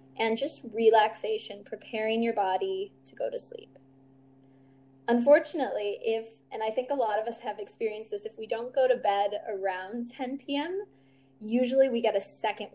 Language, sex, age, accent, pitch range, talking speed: English, female, 10-29, American, 205-280 Hz, 170 wpm